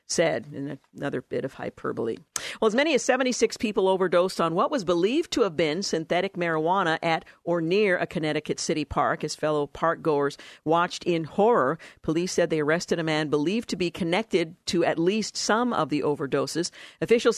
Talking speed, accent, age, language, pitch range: 185 wpm, American, 50-69, English, 155-190 Hz